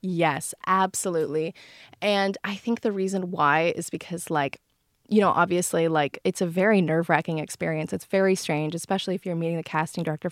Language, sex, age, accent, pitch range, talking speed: English, female, 20-39, American, 170-195 Hz, 175 wpm